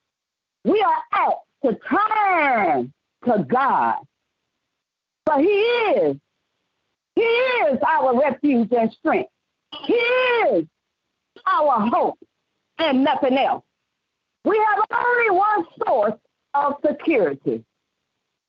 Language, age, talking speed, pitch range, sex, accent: English, 50-69, 95 wpm, 265-380 Hz, female, American